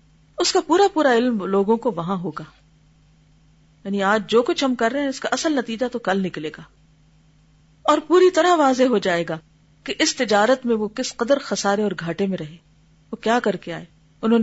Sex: female